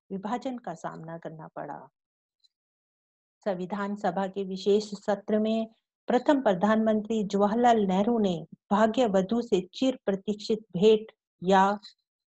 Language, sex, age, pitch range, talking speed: English, female, 50-69, 185-225 Hz, 90 wpm